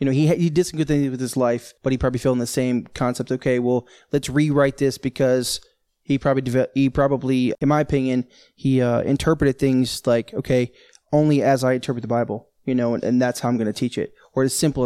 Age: 20-39